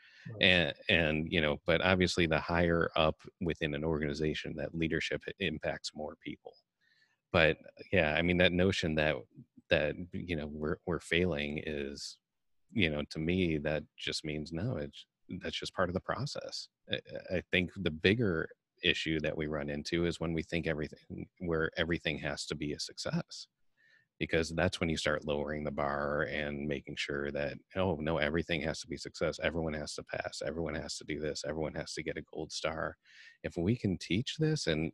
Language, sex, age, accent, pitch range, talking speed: English, male, 30-49, American, 80-100 Hz, 185 wpm